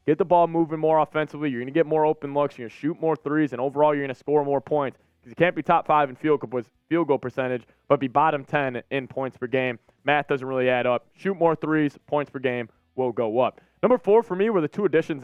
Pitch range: 135-165 Hz